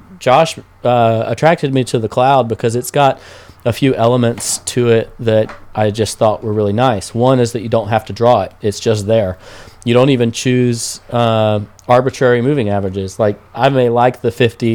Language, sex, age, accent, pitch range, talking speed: English, male, 30-49, American, 100-120 Hz, 195 wpm